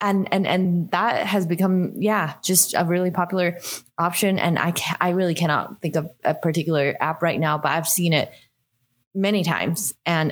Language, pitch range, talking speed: English, 155-185 Hz, 185 wpm